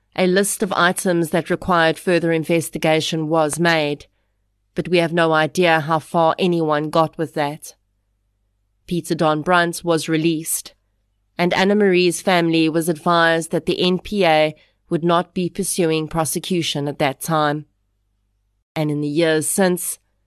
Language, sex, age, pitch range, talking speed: English, female, 30-49, 150-180 Hz, 140 wpm